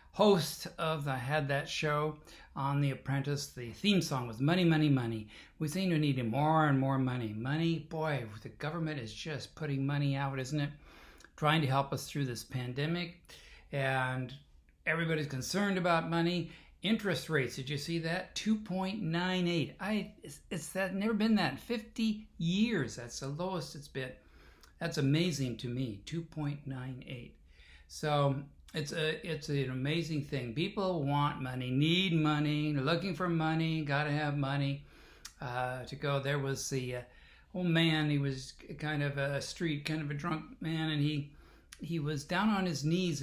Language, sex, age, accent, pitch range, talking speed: English, male, 60-79, American, 135-170 Hz, 175 wpm